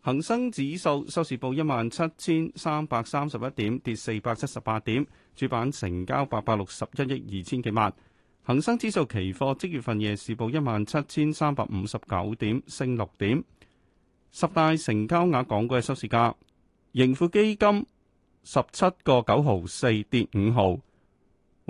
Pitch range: 105-150 Hz